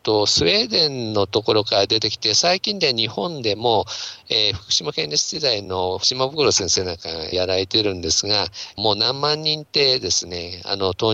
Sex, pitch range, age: male, 110-160 Hz, 50-69